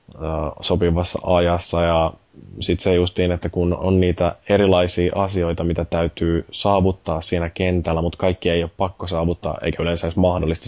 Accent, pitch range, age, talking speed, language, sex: native, 85-95 Hz, 20-39, 145 wpm, Finnish, male